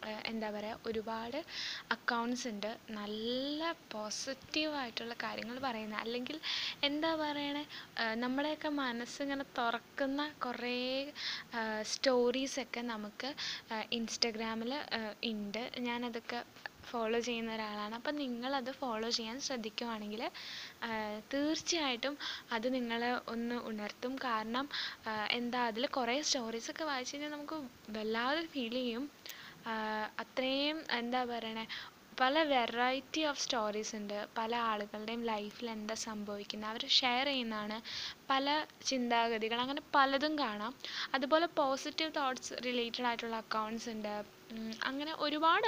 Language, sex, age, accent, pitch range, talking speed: Malayalam, female, 10-29, native, 225-280 Hz, 95 wpm